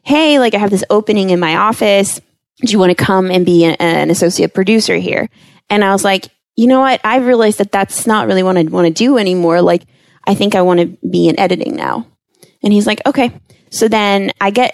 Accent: American